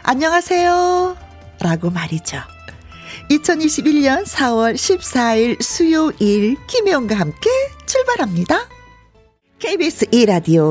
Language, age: Korean, 40-59